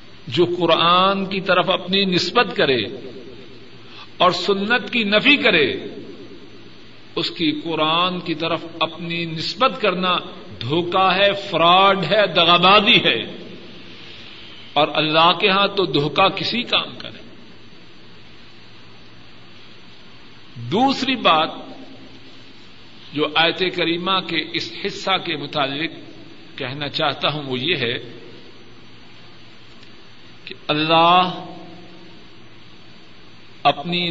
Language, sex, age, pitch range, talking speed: Urdu, male, 50-69, 150-190 Hz, 95 wpm